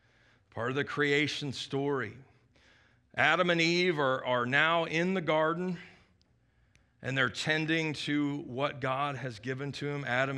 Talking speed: 145 wpm